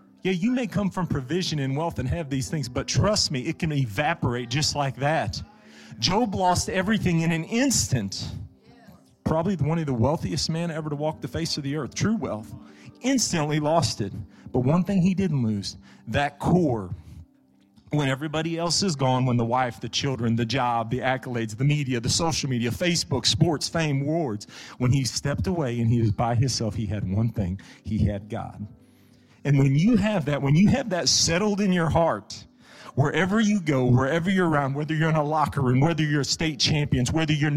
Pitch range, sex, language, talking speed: 115-165 Hz, male, English, 200 wpm